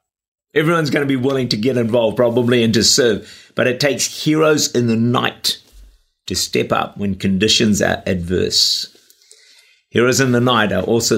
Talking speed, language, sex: 170 wpm, English, male